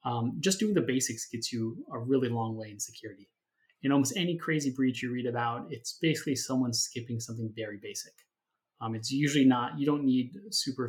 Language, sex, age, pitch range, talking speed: English, male, 20-39, 115-125 Hz, 200 wpm